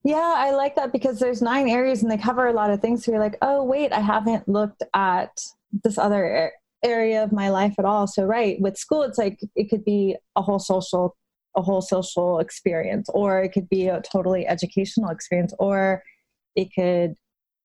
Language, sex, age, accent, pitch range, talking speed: English, female, 30-49, American, 190-230 Hz, 200 wpm